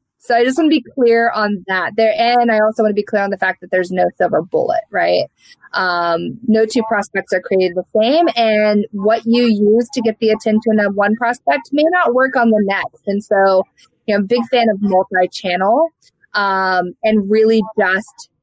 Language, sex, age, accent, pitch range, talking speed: English, female, 20-39, American, 195-240 Hz, 200 wpm